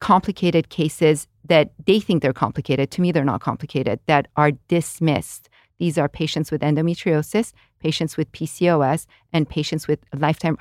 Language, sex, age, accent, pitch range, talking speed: English, female, 40-59, American, 145-175 Hz, 155 wpm